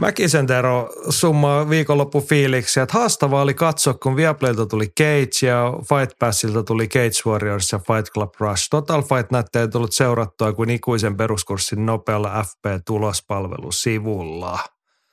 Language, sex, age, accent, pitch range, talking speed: Finnish, male, 30-49, native, 110-145 Hz, 125 wpm